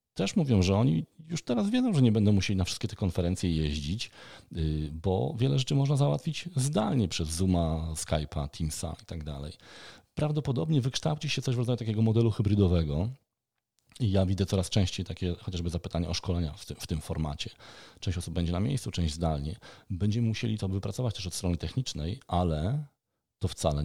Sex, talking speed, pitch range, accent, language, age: male, 180 wpm, 90-120 Hz, native, Polish, 40-59